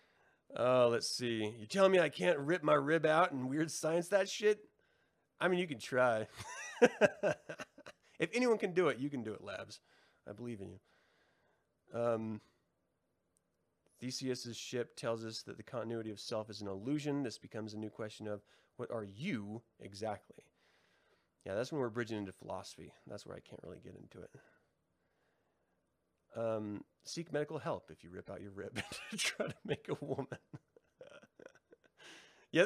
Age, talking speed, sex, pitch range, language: 30-49, 170 wpm, male, 110-155 Hz, English